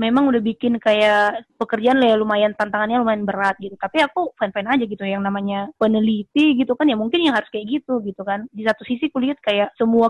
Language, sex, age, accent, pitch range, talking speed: Indonesian, female, 20-39, native, 205-240 Hz, 210 wpm